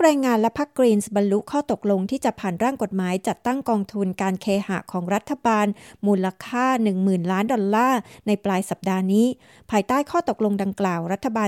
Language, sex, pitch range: Thai, female, 195-245 Hz